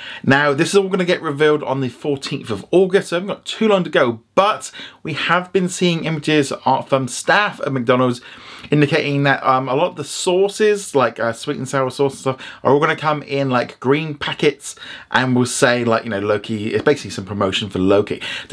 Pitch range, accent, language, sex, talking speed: 130-185 Hz, British, English, male, 225 wpm